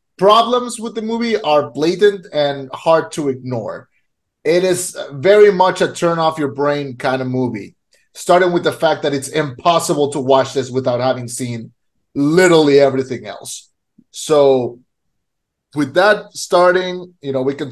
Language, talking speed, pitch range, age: English, 155 wpm, 130-160 Hz, 30-49